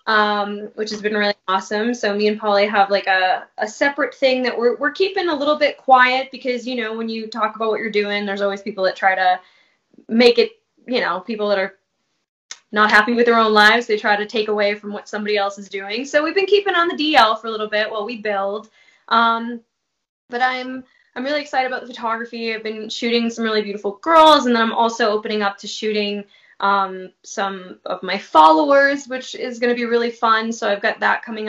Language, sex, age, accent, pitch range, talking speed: English, female, 10-29, American, 205-250 Hz, 230 wpm